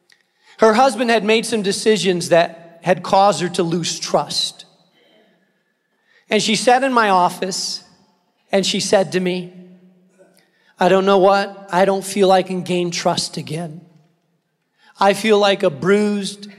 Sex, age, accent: male, 40-59, American